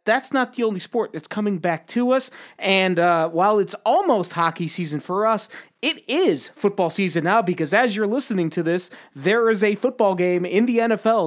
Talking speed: 200 wpm